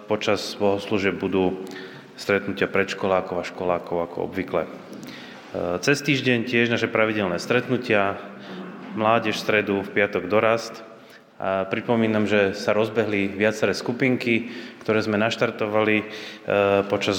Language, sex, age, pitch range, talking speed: Slovak, male, 30-49, 95-110 Hz, 110 wpm